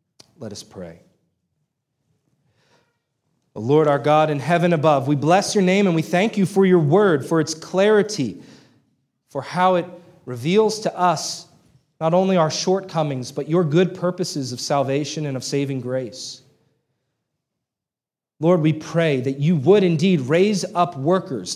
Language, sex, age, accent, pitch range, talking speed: English, male, 40-59, American, 145-180 Hz, 150 wpm